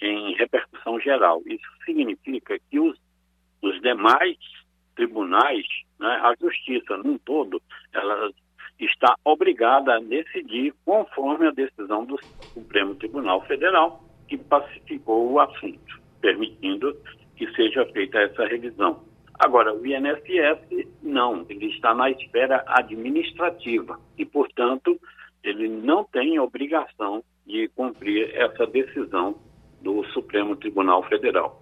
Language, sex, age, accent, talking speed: Portuguese, male, 60-79, Brazilian, 110 wpm